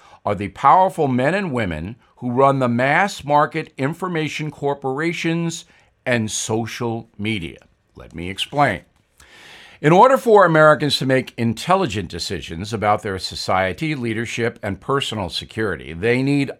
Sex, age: male, 50-69